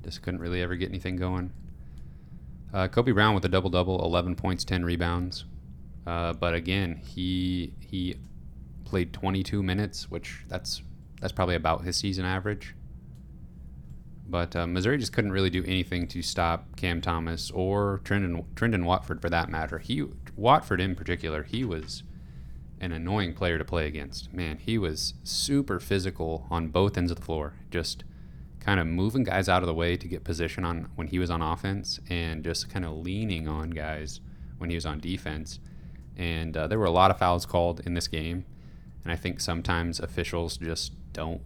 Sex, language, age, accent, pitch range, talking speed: male, English, 30-49, American, 80-90 Hz, 180 wpm